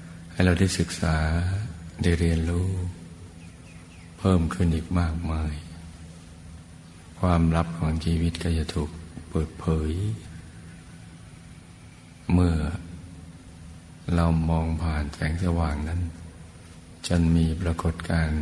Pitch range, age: 80-85 Hz, 60-79